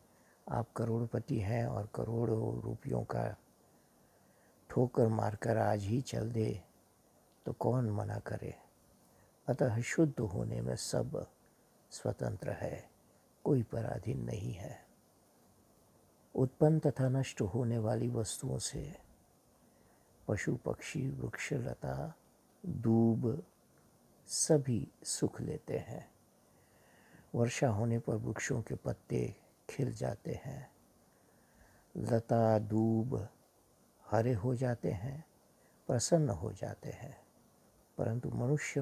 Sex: male